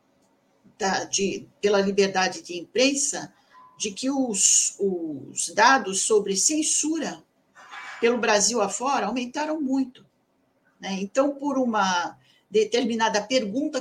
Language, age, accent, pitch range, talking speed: Portuguese, 50-69, Brazilian, 195-260 Hz, 95 wpm